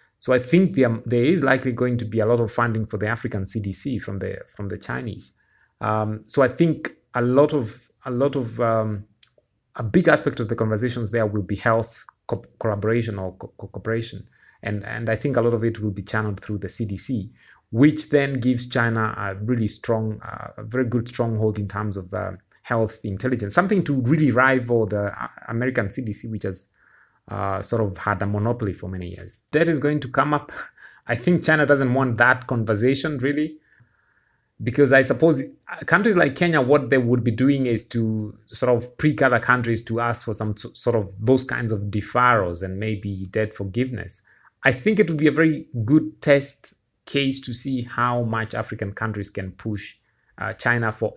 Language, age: English, 30-49